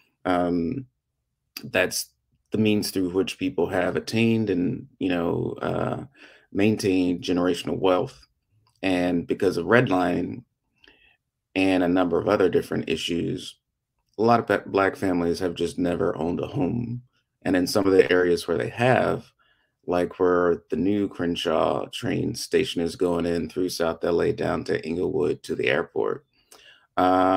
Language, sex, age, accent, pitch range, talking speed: English, male, 30-49, American, 90-105 Hz, 150 wpm